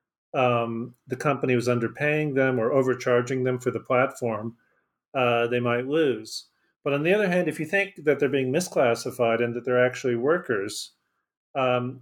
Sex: male